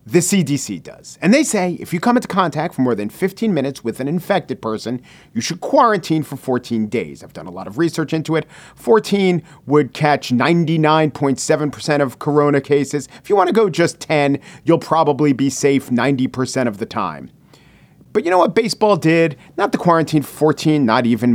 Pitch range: 130-195 Hz